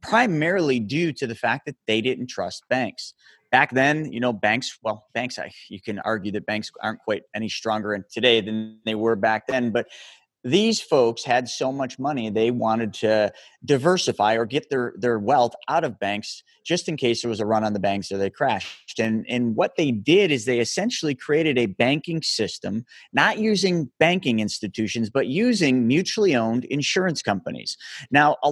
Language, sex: English, male